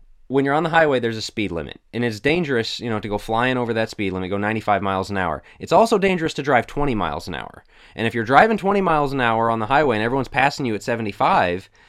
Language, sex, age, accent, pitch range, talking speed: English, male, 20-39, American, 105-140 Hz, 260 wpm